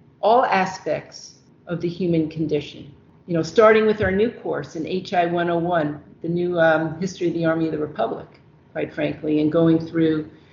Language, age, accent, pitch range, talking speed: English, 50-69, American, 165-195 Hz, 170 wpm